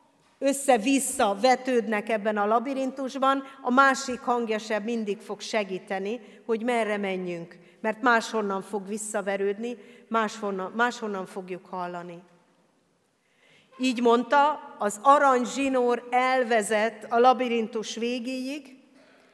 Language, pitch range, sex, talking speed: Hungarian, 195-250 Hz, female, 100 wpm